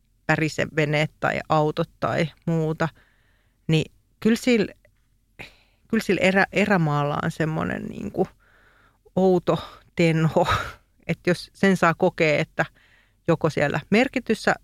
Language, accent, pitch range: Finnish, native, 145-185 Hz